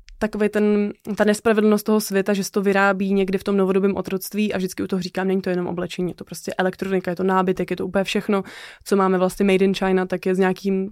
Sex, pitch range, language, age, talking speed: female, 190-210 Hz, Czech, 20-39, 240 wpm